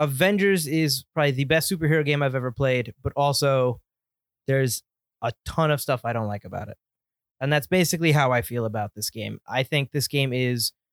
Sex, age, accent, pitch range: male, 20-39, American, 125-150 Hz